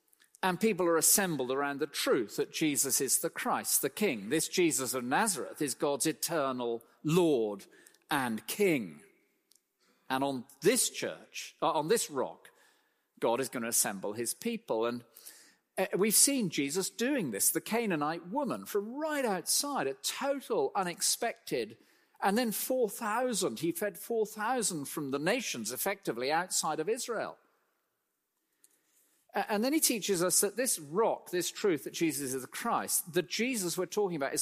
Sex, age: male, 50-69